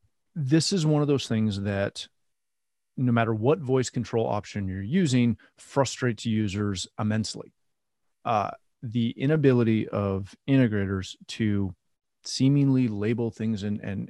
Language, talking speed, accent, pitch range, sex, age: English, 120 wpm, American, 105-130 Hz, male, 30-49